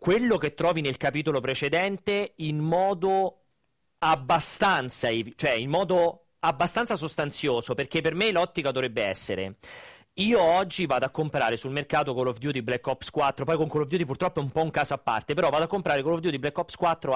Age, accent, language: 40-59, native, Italian